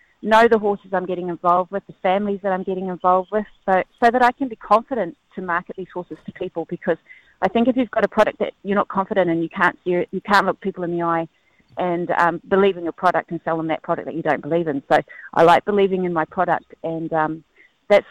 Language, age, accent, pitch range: English, 30-49, Australian, 170-215 Hz